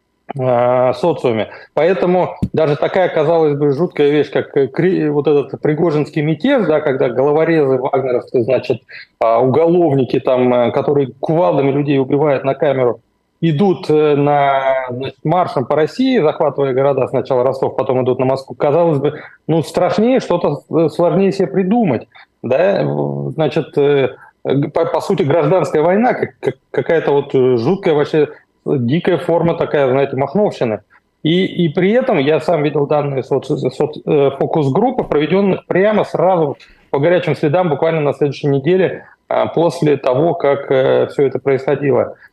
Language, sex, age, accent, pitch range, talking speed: Russian, male, 20-39, native, 140-175 Hz, 130 wpm